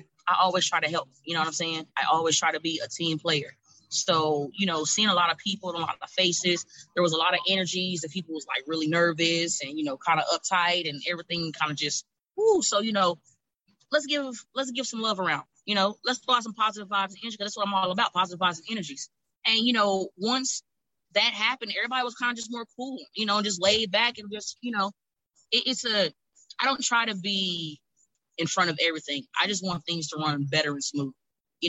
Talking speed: 240 wpm